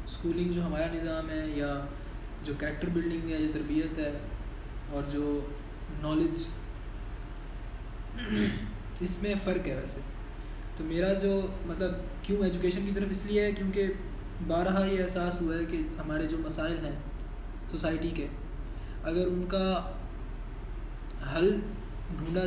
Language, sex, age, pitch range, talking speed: Urdu, male, 20-39, 115-170 Hz, 135 wpm